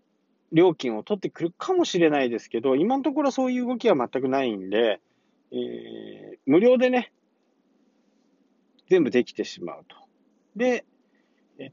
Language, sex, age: Japanese, male, 40-59